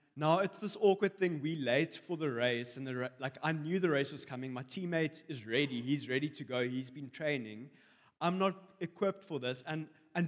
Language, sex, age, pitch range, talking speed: English, male, 20-39, 130-165 Hz, 215 wpm